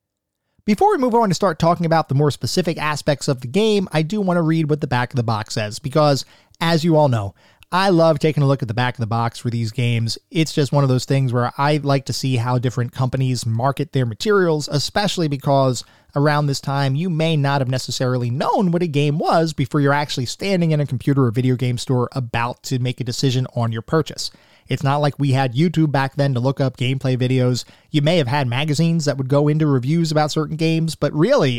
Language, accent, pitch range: English, American, 125-160 Hz